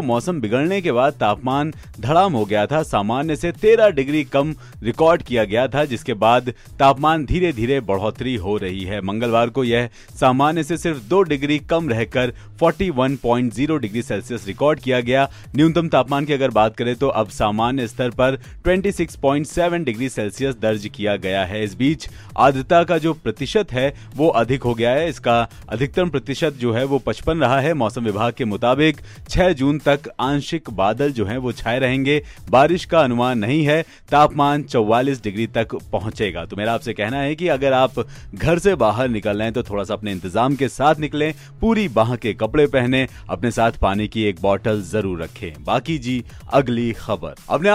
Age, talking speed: 30-49, 160 wpm